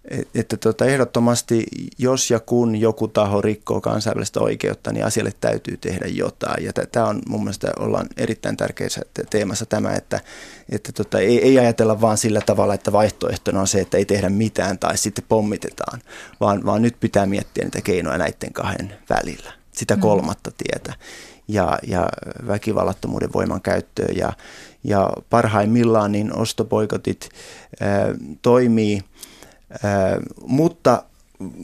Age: 30-49